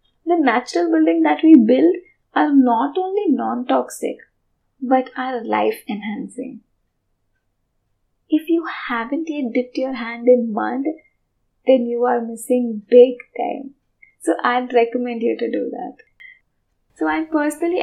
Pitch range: 230-270 Hz